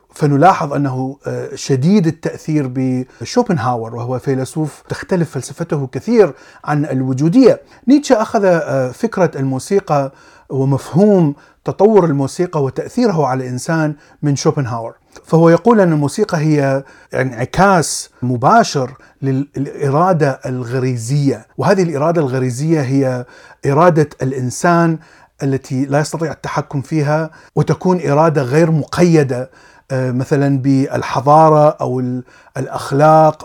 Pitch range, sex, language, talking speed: 135-170 Hz, male, Arabic, 95 wpm